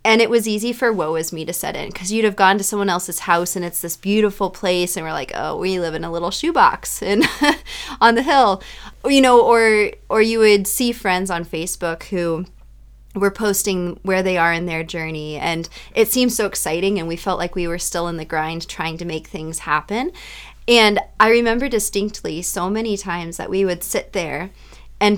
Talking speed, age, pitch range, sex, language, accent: 215 wpm, 20-39, 170-215 Hz, female, English, American